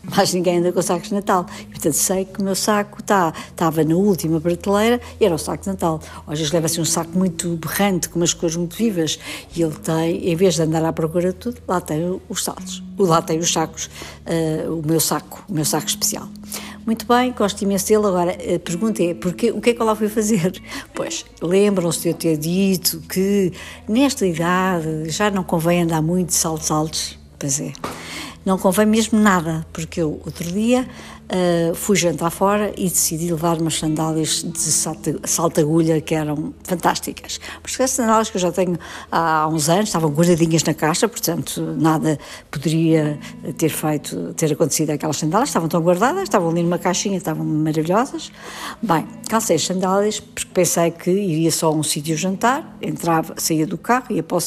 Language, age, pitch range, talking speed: Portuguese, 60-79, 160-195 Hz, 195 wpm